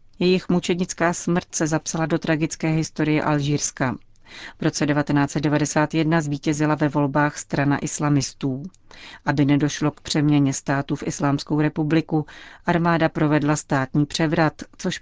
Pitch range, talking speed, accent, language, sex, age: 145-160 Hz, 120 wpm, native, Czech, female, 40-59